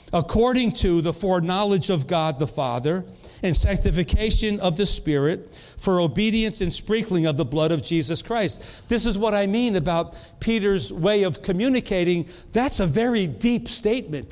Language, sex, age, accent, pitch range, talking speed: English, male, 50-69, American, 160-210 Hz, 160 wpm